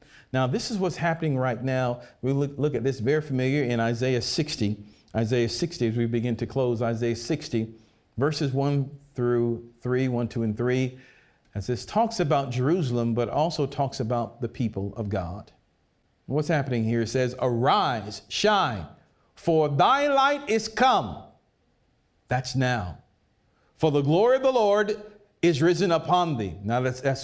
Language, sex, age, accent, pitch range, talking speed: English, male, 50-69, American, 115-175 Hz, 165 wpm